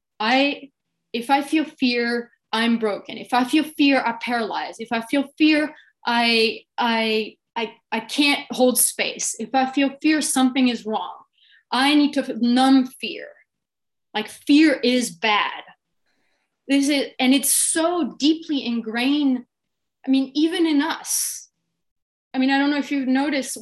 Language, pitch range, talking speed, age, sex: English, 230-275 Hz, 150 wpm, 20-39, female